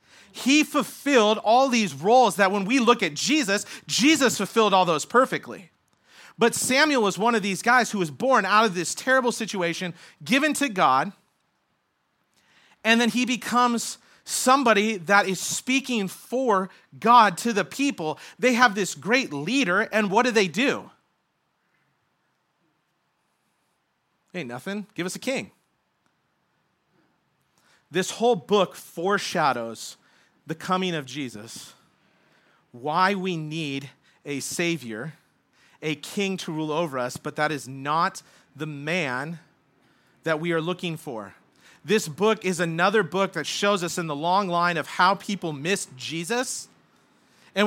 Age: 40-59